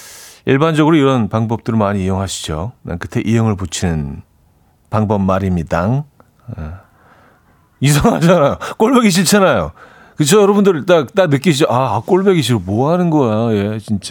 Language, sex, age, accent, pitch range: Korean, male, 40-59, native, 100-150 Hz